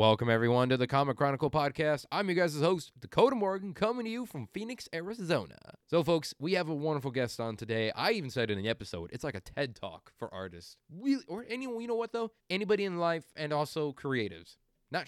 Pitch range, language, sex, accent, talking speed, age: 120-170 Hz, English, male, American, 215 wpm, 20-39